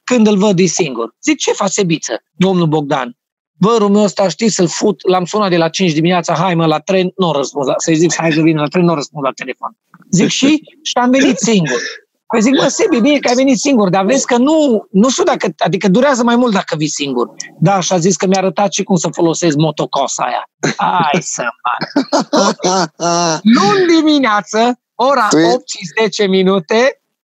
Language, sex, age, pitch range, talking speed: Romanian, male, 40-59, 175-225 Hz, 190 wpm